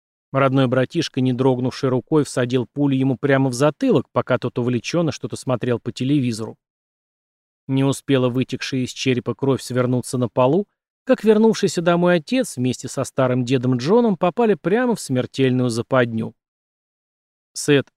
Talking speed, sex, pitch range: 140 wpm, male, 125-165 Hz